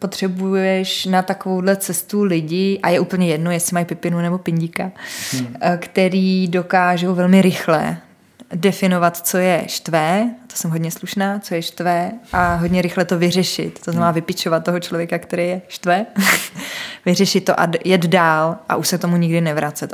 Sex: female